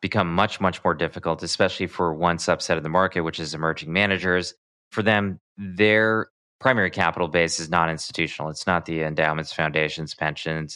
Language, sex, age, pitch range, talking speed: English, male, 20-39, 80-100 Hz, 165 wpm